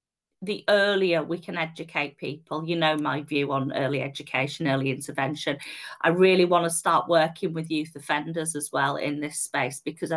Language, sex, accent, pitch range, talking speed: English, female, British, 155-185 Hz, 175 wpm